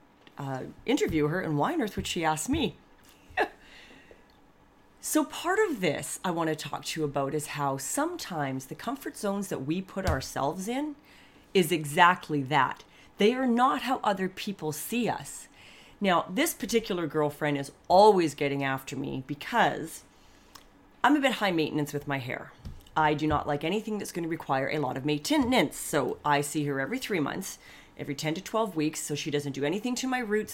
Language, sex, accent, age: English, female, American, 30-49